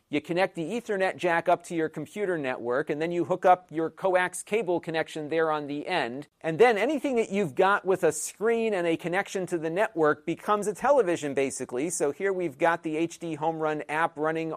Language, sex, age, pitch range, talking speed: English, male, 40-59, 145-170 Hz, 215 wpm